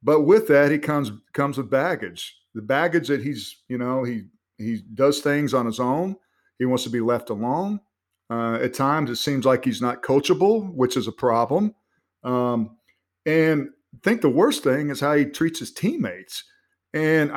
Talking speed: 185 wpm